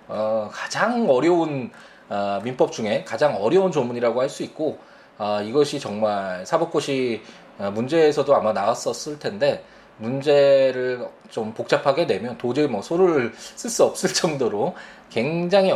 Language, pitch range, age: Korean, 110-175 Hz, 20-39